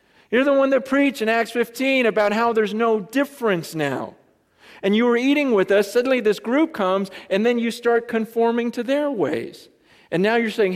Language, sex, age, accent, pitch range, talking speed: English, male, 40-59, American, 145-220 Hz, 200 wpm